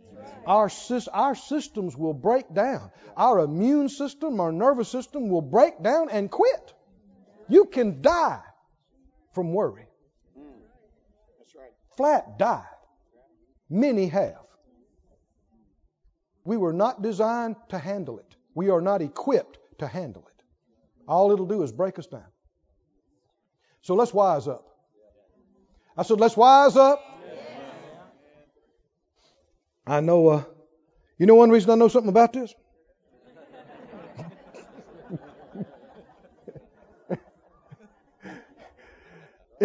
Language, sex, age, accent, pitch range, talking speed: English, male, 60-79, American, 155-225 Hz, 100 wpm